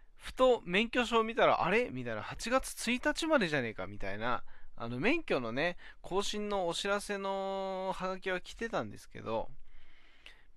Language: Japanese